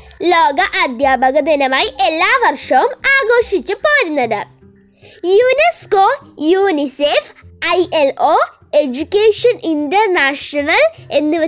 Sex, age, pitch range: female, 20-39, 280-395 Hz